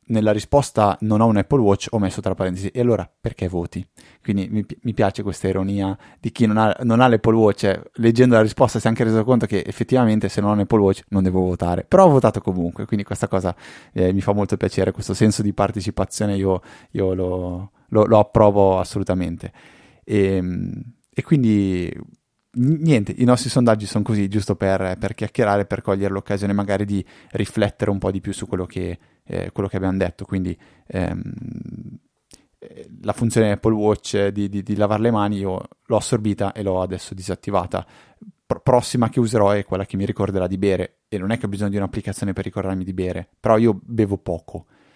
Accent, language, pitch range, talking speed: native, Italian, 95-110 Hz, 200 wpm